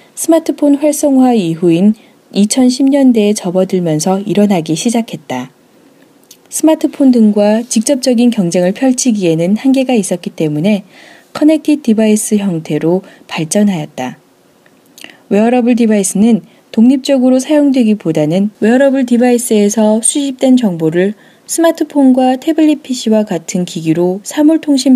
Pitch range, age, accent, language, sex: 185-265 Hz, 20-39, native, Korean, female